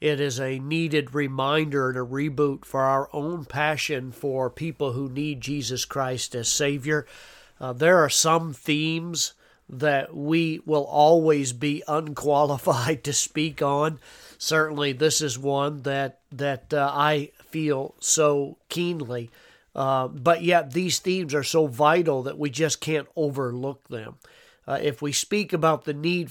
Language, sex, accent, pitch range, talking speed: English, male, American, 140-160 Hz, 150 wpm